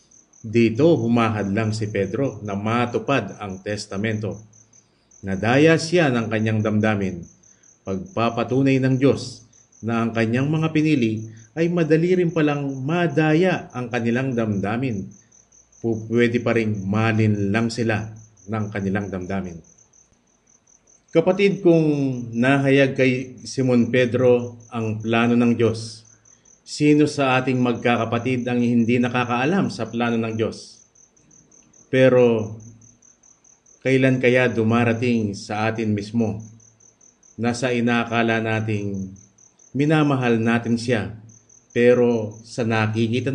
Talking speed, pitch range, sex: 100 wpm, 110-130 Hz, male